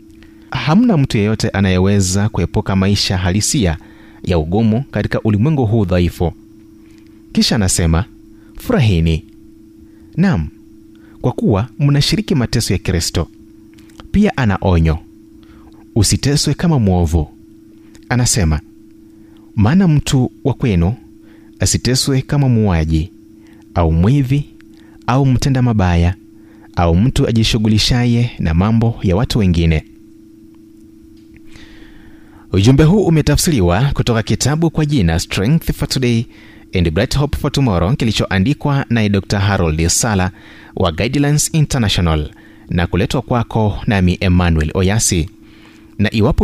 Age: 30-49